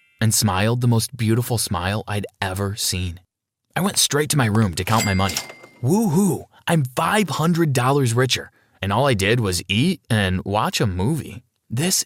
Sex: male